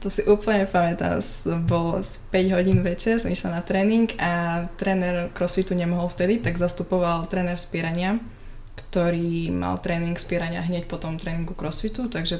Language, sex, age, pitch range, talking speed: Czech, female, 20-39, 160-180 Hz, 150 wpm